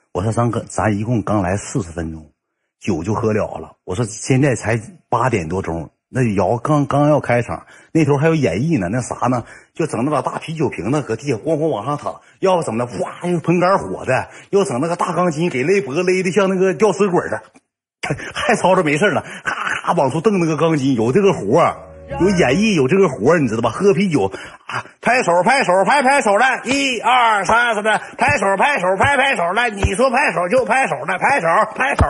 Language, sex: Chinese, male